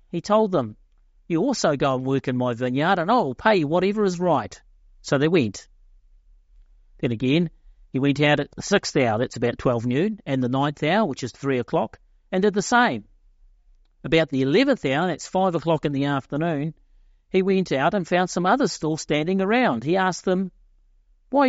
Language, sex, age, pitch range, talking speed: English, male, 50-69, 120-185 Hz, 195 wpm